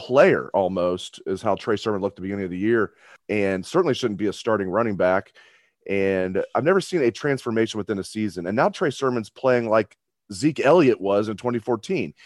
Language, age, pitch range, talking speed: English, 30-49, 95-125 Hz, 200 wpm